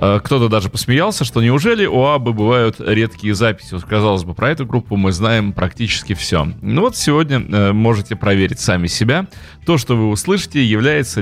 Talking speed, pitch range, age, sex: 170 wpm, 100-130 Hz, 30-49, male